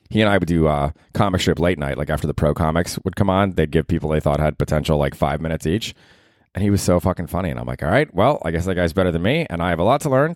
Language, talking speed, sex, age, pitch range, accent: English, 325 wpm, male, 20-39, 85-140 Hz, American